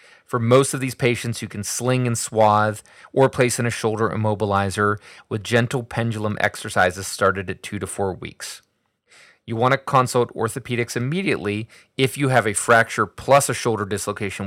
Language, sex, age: English, male, 30-49